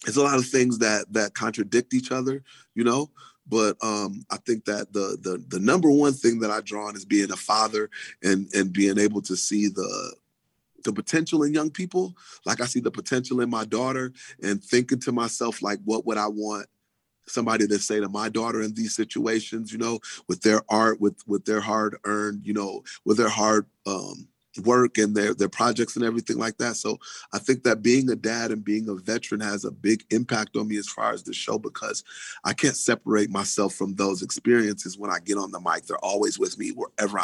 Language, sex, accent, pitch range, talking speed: English, male, American, 105-120 Hz, 220 wpm